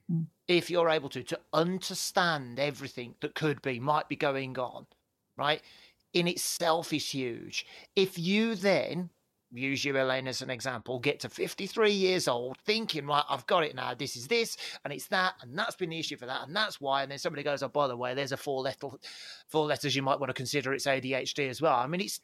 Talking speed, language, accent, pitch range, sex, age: 215 wpm, English, British, 135-175 Hz, male, 30-49